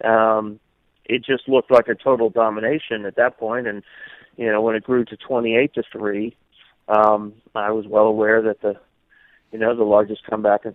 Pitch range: 110-130 Hz